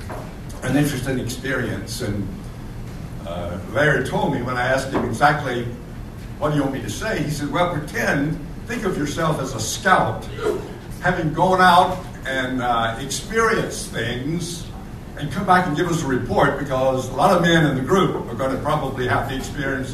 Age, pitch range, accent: 60-79, 115-155 Hz, American